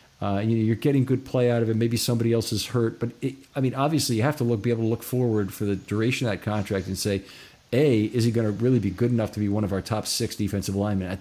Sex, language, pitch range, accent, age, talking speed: male, English, 105-130 Hz, American, 50-69, 300 wpm